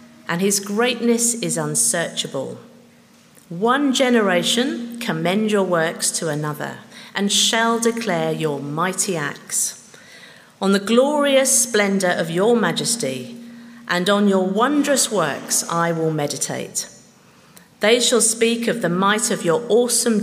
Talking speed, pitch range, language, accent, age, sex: 125 wpm, 170-235 Hz, English, British, 50-69, female